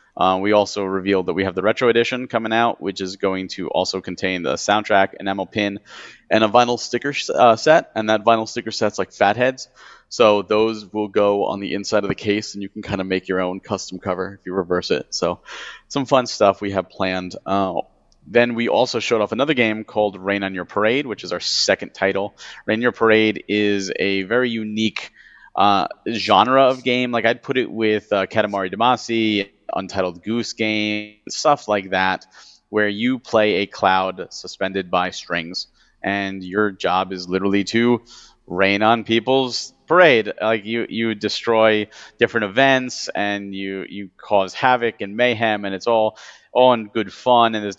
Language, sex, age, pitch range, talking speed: English, male, 30-49, 95-115 Hz, 190 wpm